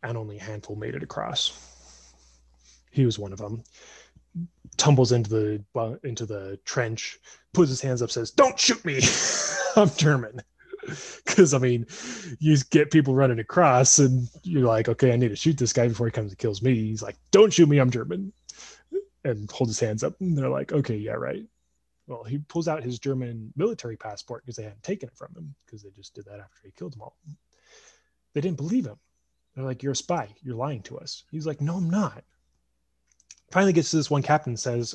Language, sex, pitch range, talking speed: English, male, 110-145 Hz, 205 wpm